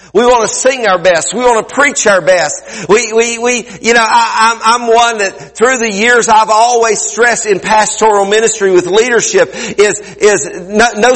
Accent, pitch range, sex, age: American, 190-240 Hz, male, 50-69